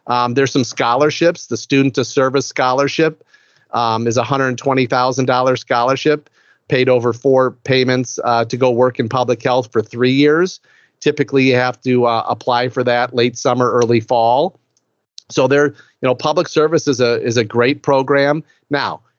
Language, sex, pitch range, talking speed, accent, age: English, male, 120-135 Hz, 175 wpm, American, 40-59